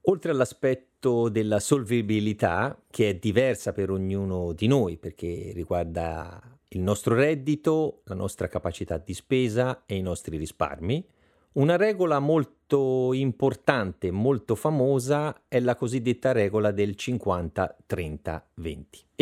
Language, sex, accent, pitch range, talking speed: Italian, male, native, 100-140 Hz, 115 wpm